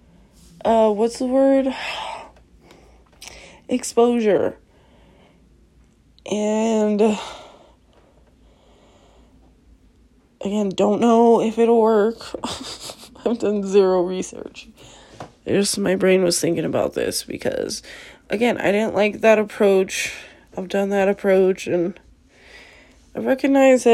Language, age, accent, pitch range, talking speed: English, 20-39, American, 205-245 Hz, 95 wpm